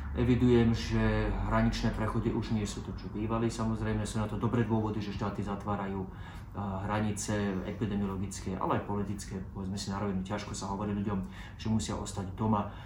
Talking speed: 165 wpm